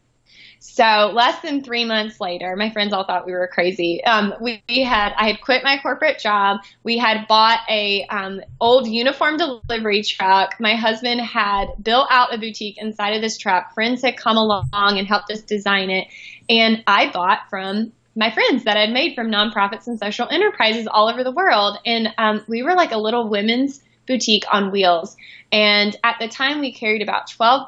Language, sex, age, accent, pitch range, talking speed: English, female, 20-39, American, 195-230 Hz, 195 wpm